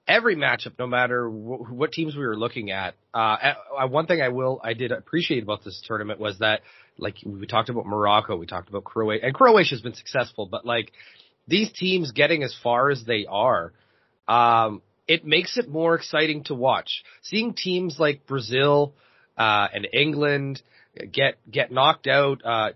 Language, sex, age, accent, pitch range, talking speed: English, male, 30-49, American, 120-160 Hz, 180 wpm